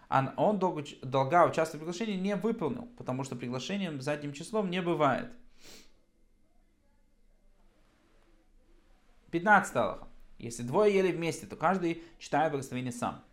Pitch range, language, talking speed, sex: 135-190 Hz, Russian, 115 wpm, male